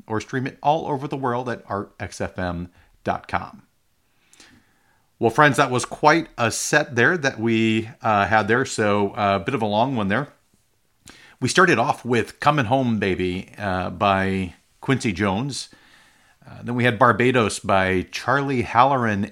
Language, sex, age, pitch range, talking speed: English, male, 50-69, 100-125 Hz, 155 wpm